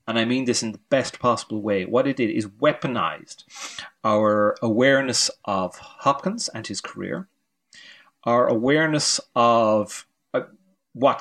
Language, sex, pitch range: English, male, 105-130 Hz